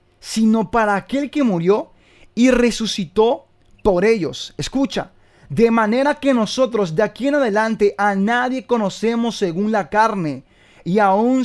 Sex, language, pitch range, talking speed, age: male, Spanish, 160-225 Hz, 135 wpm, 30-49